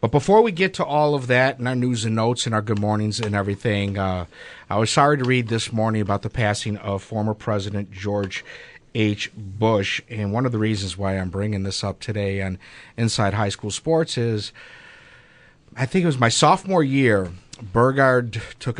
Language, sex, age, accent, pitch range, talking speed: English, male, 50-69, American, 100-120 Hz, 200 wpm